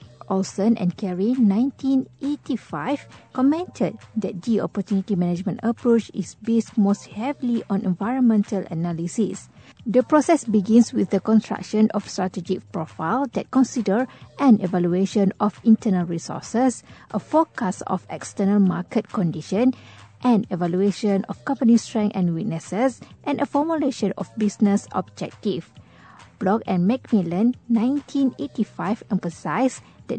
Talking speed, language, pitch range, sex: 115 wpm, English, 190-245 Hz, female